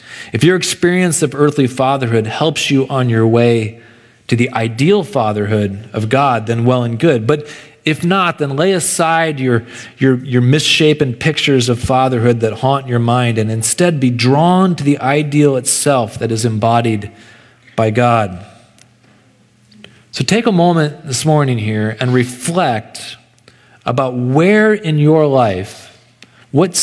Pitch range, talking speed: 115-145 Hz, 145 wpm